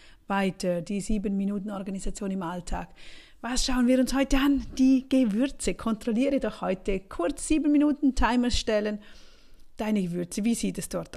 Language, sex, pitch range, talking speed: German, female, 190-250 Hz, 135 wpm